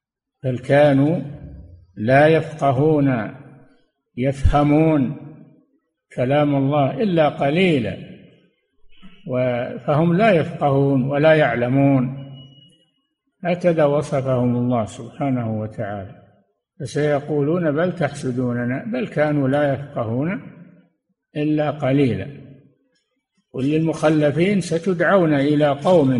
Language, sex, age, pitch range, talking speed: Arabic, male, 60-79, 130-165 Hz, 70 wpm